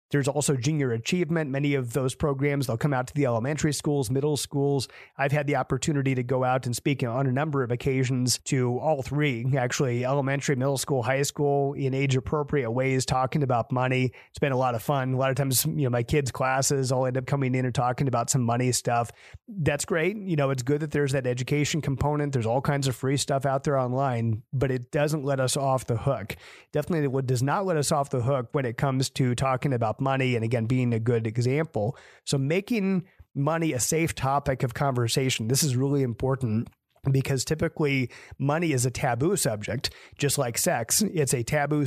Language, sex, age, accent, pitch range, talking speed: English, male, 30-49, American, 130-145 Hz, 210 wpm